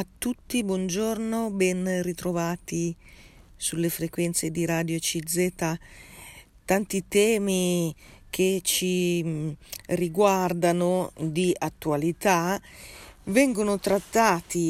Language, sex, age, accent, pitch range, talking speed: Italian, female, 40-59, native, 160-185 Hz, 80 wpm